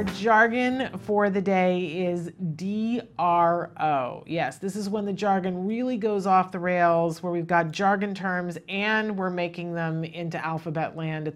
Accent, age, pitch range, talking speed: American, 40-59, 165-210 Hz, 160 wpm